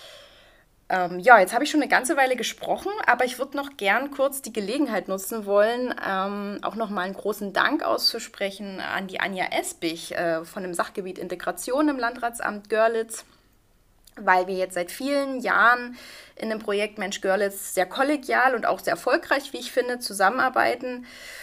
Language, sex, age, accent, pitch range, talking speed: German, female, 20-39, German, 185-245 Hz, 160 wpm